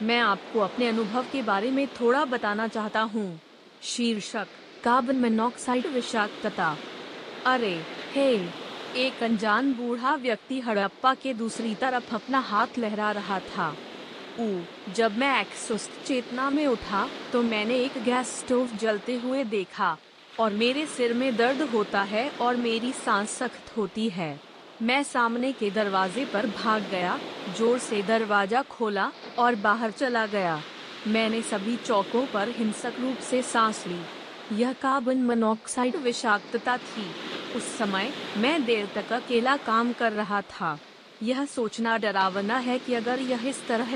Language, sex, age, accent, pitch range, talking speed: Hindi, female, 30-49, native, 210-255 Hz, 145 wpm